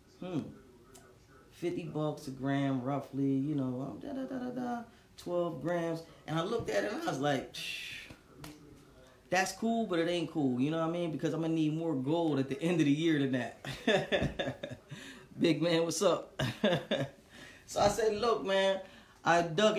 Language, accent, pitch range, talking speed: English, American, 150-195 Hz, 185 wpm